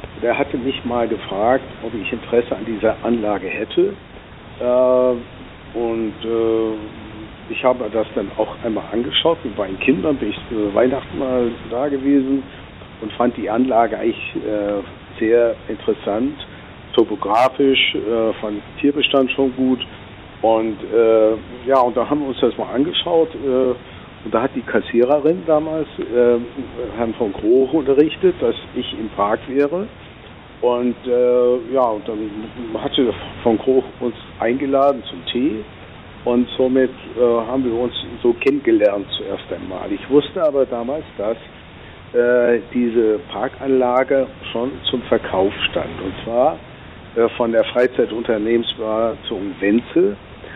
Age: 60-79